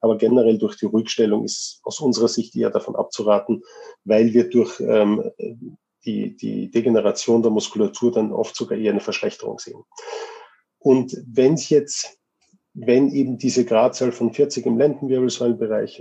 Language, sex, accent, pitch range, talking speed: German, male, German, 120-145 Hz, 150 wpm